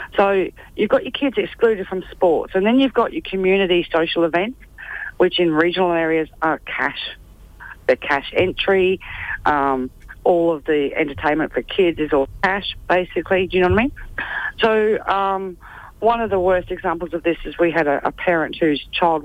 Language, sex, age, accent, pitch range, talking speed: English, female, 40-59, Australian, 155-190 Hz, 185 wpm